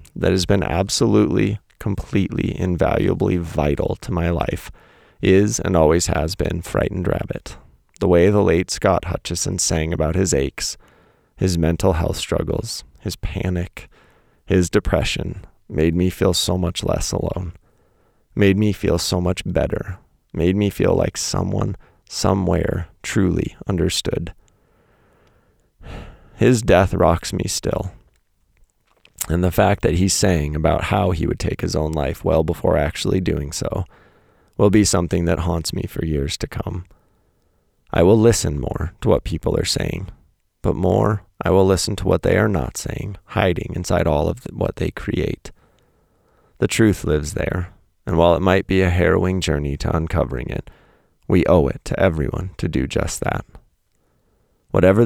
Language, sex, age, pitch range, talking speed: English, male, 30-49, 85-100 Hz, 155 wpm